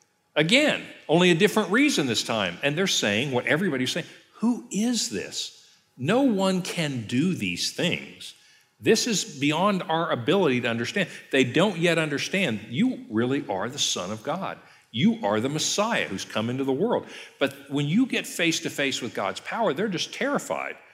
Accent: American